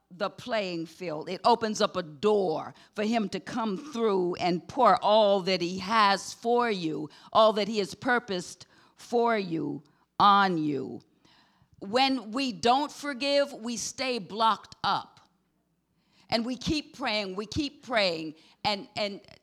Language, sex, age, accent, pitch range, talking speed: English, female, 50-69, American, 195-260 Hz, 145 wpm